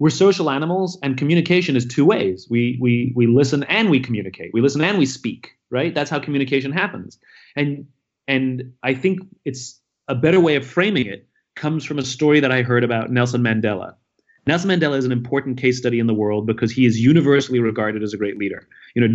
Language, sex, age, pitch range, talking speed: English, male, 30-49, 120-150 Hz, 210 wpm